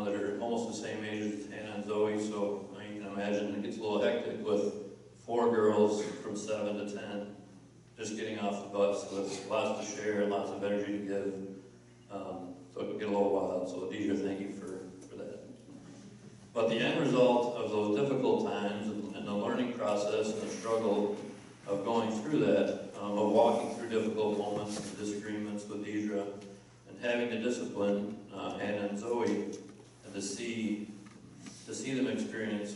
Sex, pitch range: male, 100-110 Hz